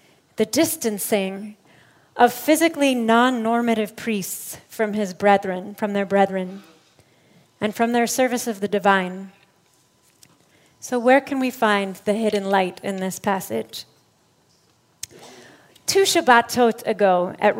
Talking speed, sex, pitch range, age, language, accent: 115 wpm, female, 200-250 Hz, 30-49, English, American